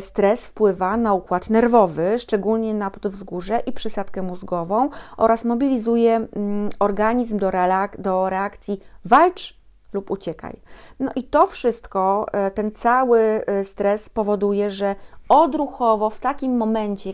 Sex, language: female, Polish